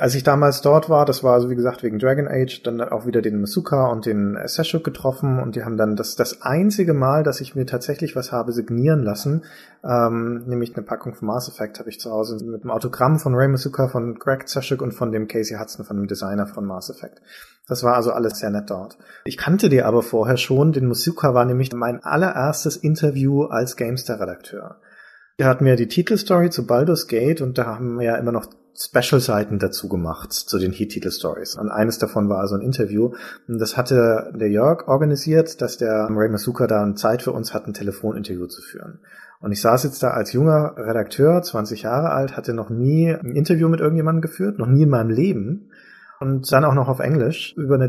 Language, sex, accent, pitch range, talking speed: German, male, German, 115-145 Hz, 215 wpm